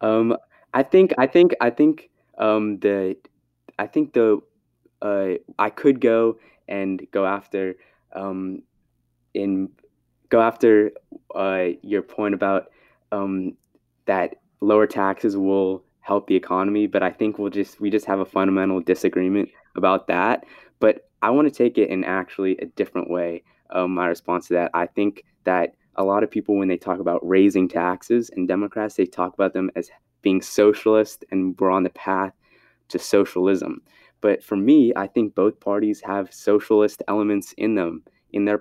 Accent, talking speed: American, 165 wpm